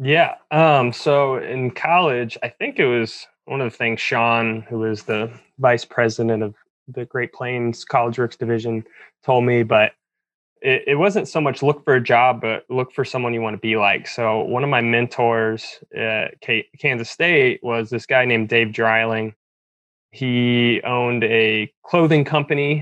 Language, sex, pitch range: English, male, 110-125 Hz